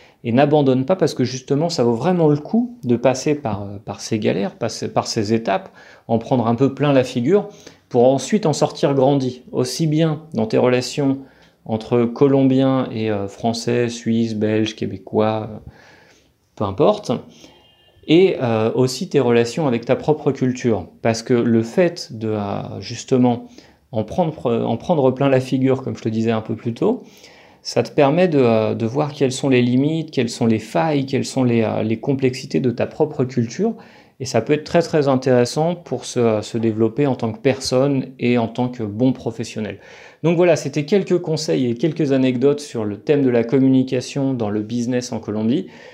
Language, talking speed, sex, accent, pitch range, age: French, 180 wpm, male, French, 115-145 Hz, 40-59